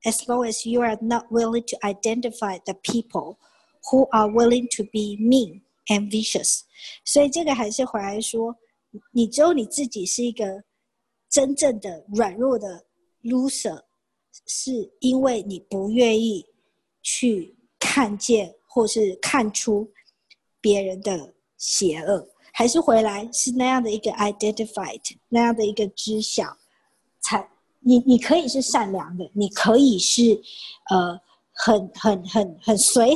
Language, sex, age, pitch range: Chinese, male, 50-69, 210-260 Hz